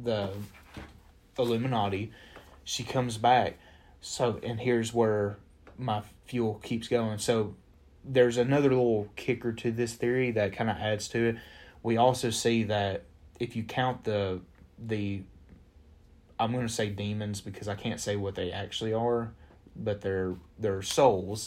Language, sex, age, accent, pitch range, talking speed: English, male, 30-49, American, 95-120 Hz, 150 wpm